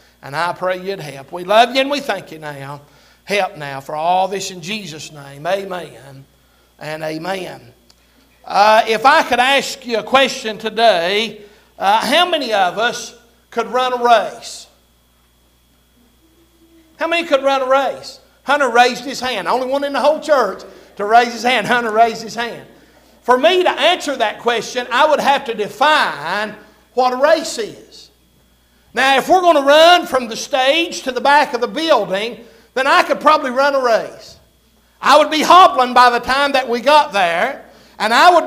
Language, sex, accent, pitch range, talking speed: English, male, American, 205-290 Hz, 180 wpm